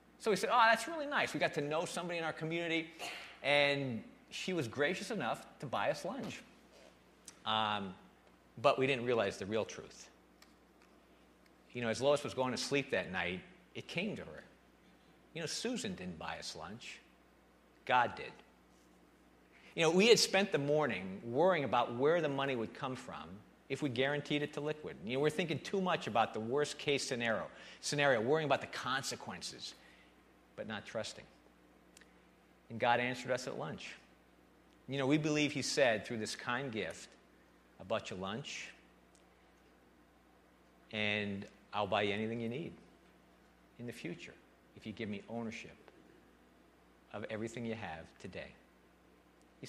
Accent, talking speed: American, 160 wpm